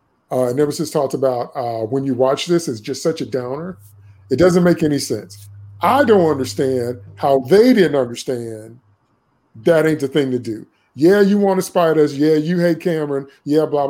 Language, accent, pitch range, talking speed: English, American, 130-175 Hz, 195 wpm